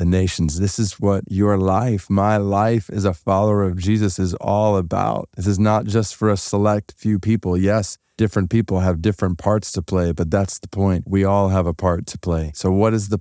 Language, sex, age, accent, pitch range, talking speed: English, male, 30-49, American, 85-100 Hz, 220 wpm